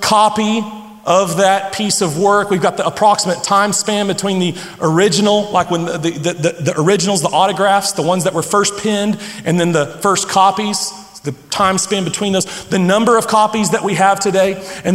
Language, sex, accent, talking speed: English, male, American, 195 wpm